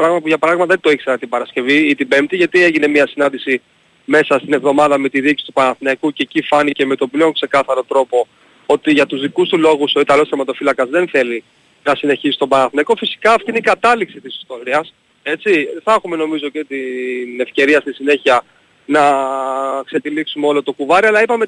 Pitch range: 135-165 Hz